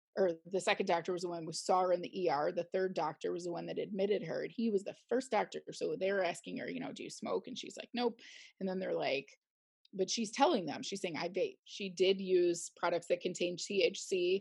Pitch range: 175-230 Hz